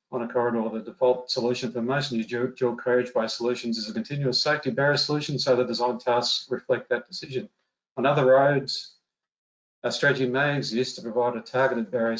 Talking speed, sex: 175 wpm, male